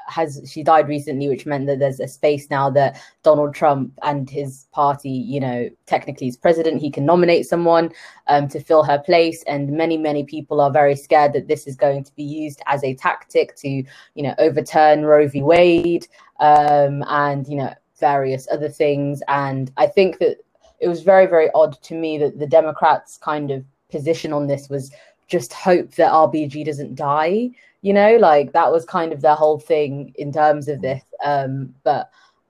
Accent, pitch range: British, 140-160 Hz